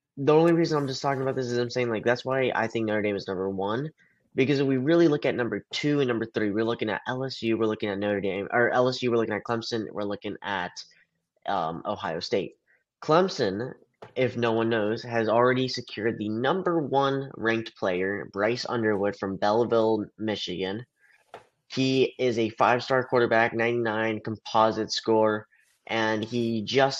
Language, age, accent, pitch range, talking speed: English, 10-29, American, 110-125 Hz, 180 wpm